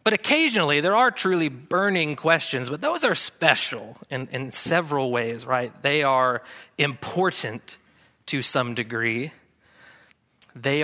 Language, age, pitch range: English, 40-59, 125-165 Hz